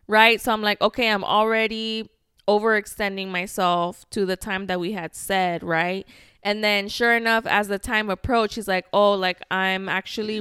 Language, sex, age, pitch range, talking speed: English, female, 20-39, 190-225 Hz, 180 wpm